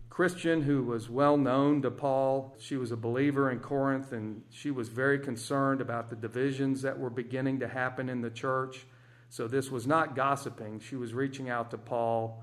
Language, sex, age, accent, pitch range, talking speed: English, male, 50-69, American, 115-135 Hz, 195 wpm